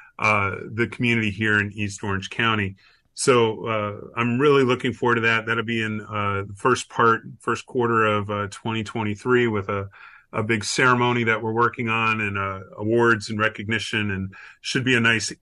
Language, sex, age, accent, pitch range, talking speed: English, male, 30-49, American, 105-120 Hz, 185 wpm